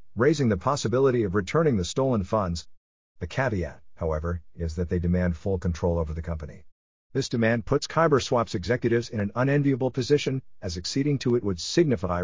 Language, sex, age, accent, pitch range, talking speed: English, male, 50-69, American, 90-120 Hz, 170 wpm